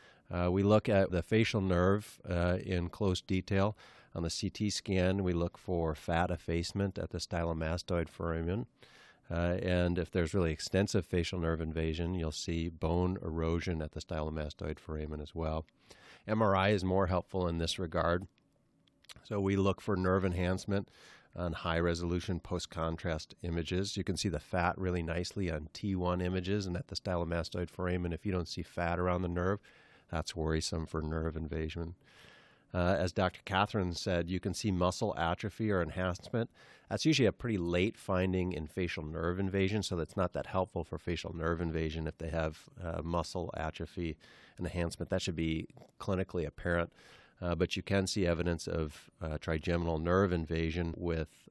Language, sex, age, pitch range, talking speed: English, male, 40-59, 80-95 Hz, 165 wpm